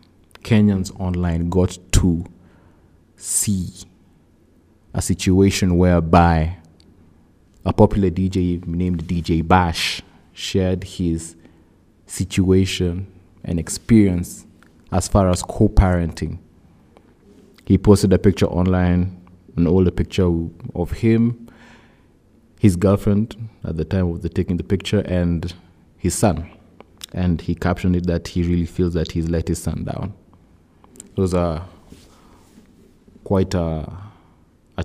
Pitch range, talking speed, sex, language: 85-95 Hz, 110 wpm, male, English